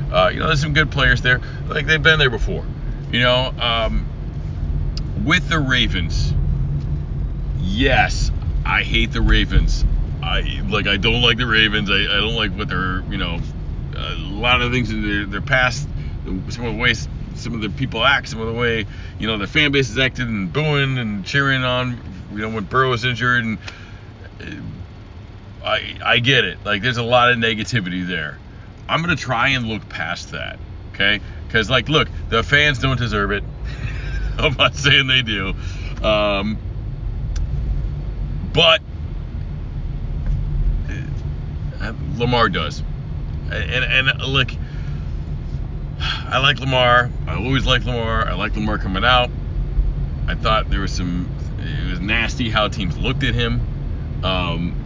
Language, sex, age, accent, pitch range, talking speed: English, male, 40-59, American, 95-125 Hz, 155 wpm